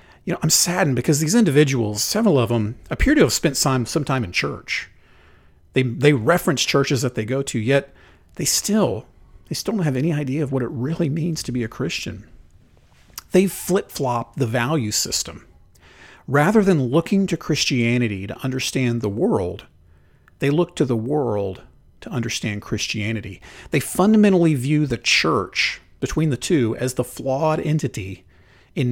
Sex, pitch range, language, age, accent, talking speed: male, 115-155 Hz, English, 40-59, American, 165 wpm